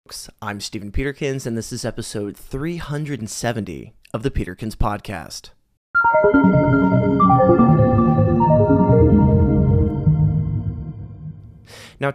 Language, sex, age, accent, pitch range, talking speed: English, male, 30-49, American, 105-135 Hz, 65 wpm